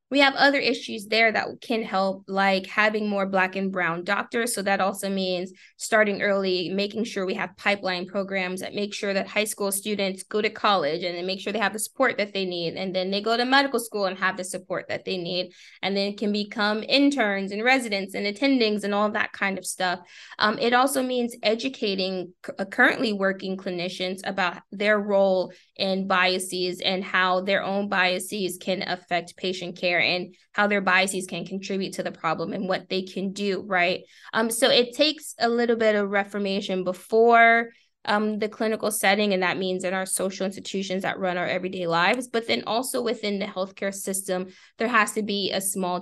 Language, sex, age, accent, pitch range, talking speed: English, female, 20-39, American, 185-220 Hz, 200 wpm